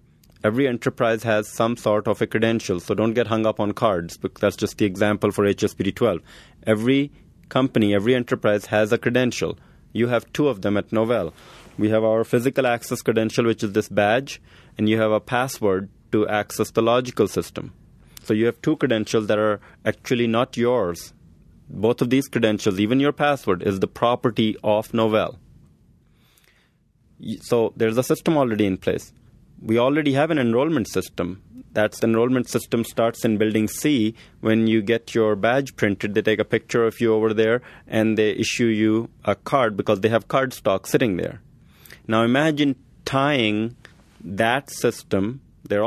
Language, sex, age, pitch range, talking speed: English, male, 30-49, 105-125 Hz, 175 wpm